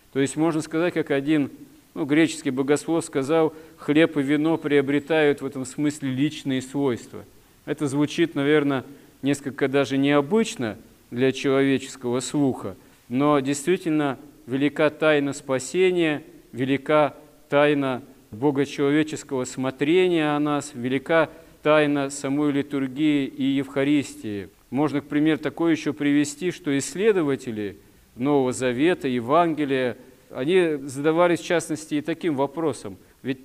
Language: Russian